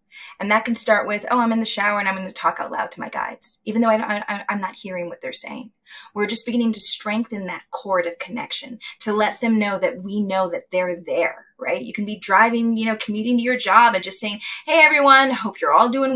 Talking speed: 255 wpm